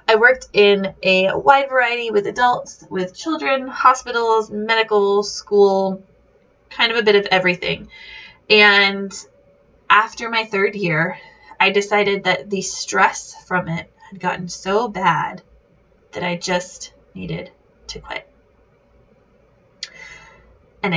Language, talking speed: English, 120 wpm